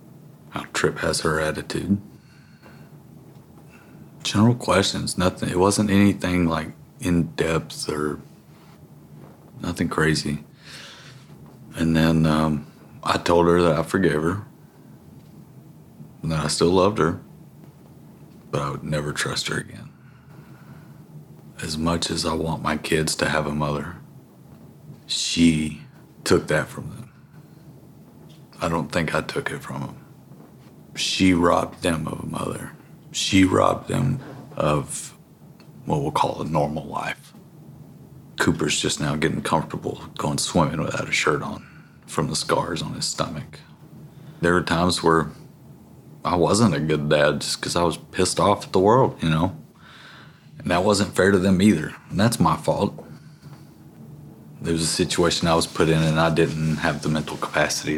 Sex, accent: male, American